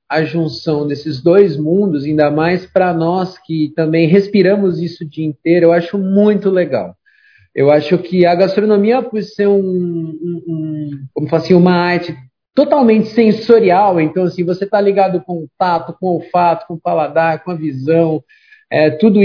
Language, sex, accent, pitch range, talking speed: Portuguese, male, Brazilian, 160-200 Hz, 150 wpm